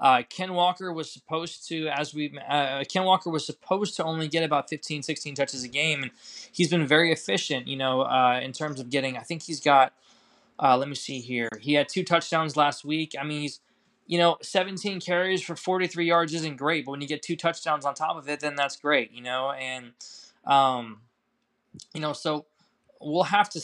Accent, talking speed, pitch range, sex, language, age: American, 215 wpm, 130-160 Hz, male, English, 20-39